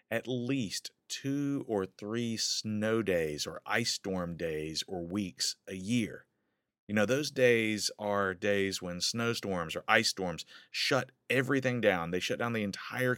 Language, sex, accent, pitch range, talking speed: English, male, American, 95-125 Hz, 155 wpm